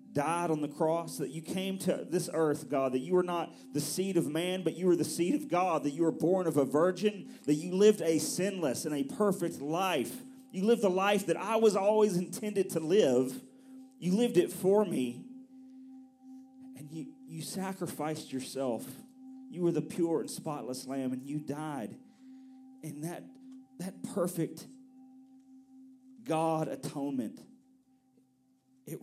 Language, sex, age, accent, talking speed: English, male, 40-59, American, 165 wpm